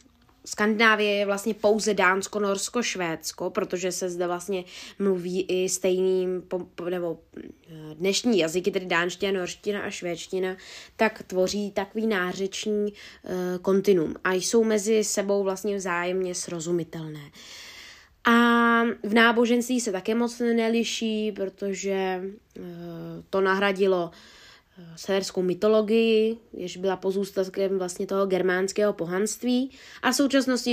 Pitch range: 185-220 Hz